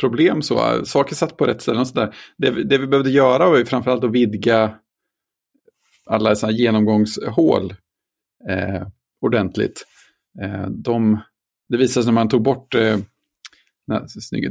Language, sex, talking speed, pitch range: Swedish, male, 135 wpm, 105-125 Hz